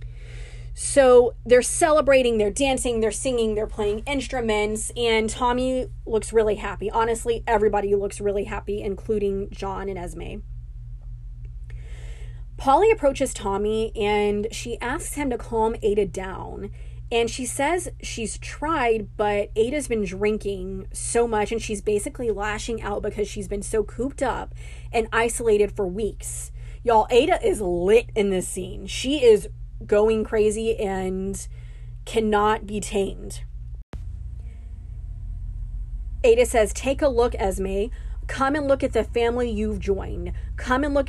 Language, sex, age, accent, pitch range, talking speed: English, female, 20-39, American, 190-235 Hz, 135 wpm